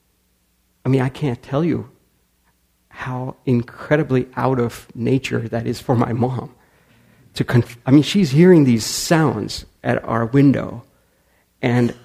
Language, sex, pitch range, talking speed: English, male, 115-185 Hz, 140 wpm